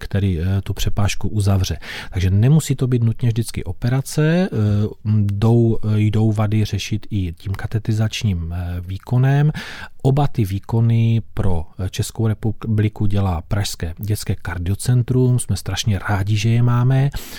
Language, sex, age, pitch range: Czech, male, 40-59, 95-115 Hz